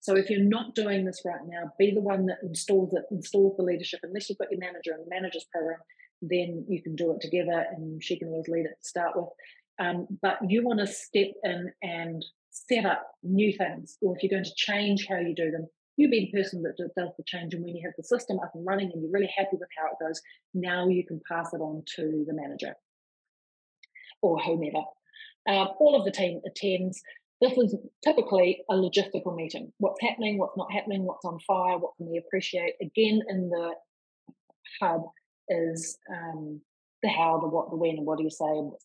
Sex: female